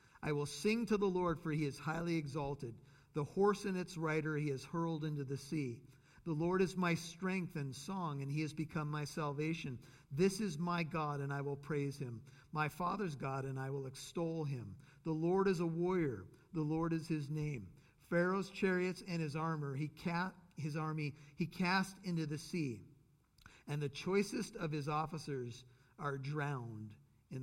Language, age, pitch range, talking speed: English, 50-69, 140-175 Hz, 185 wpm